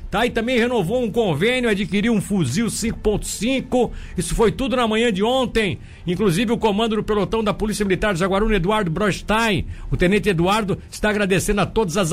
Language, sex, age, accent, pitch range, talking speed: Portuguese, male, 60-79, Brazilian, 175-225 Hz, 180 wpm